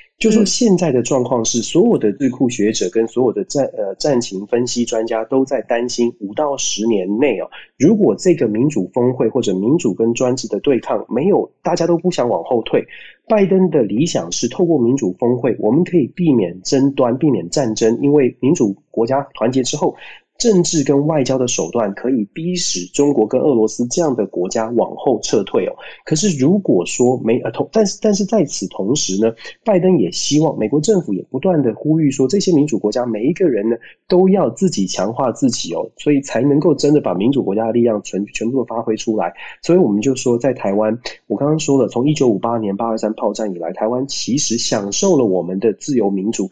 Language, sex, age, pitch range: Chinese, male, 30-49, 110-160 Hz